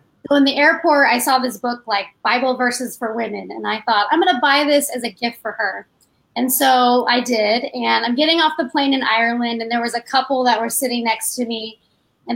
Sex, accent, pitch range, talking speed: female, American, 235-300 Hz, 245 wpm